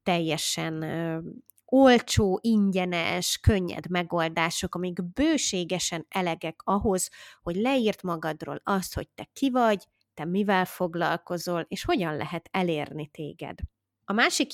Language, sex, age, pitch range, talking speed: Hungarian, female, 20-39, 170-205 Hz, 115 wpm